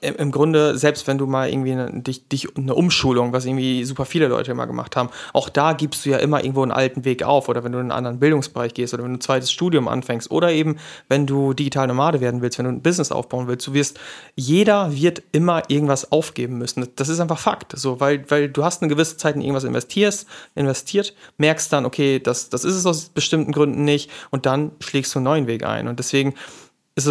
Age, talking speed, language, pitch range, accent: 30-49, 235 wpm, German, 130-155 Hz, German